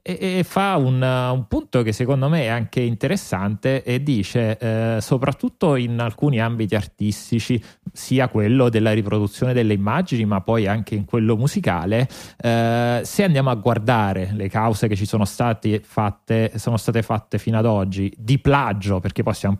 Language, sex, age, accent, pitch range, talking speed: Italian, male, 30-49, native, 105-125 Hz, 165 wpm